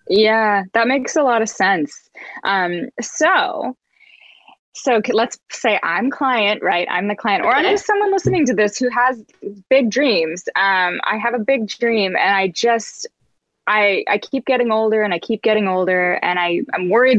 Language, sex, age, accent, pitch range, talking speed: English, female, 20-39, American, 195-245 Hz, 180 wpm